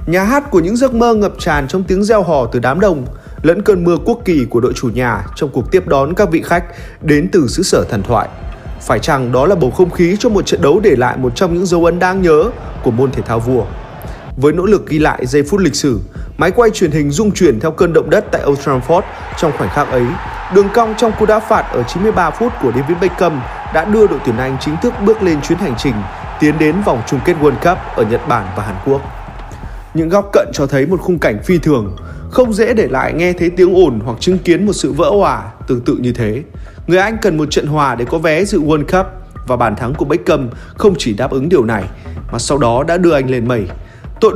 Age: 20-39